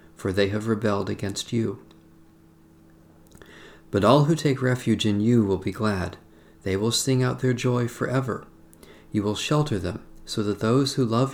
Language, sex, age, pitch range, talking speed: English, male, 50-69, 90-125 Hz, 170 wpm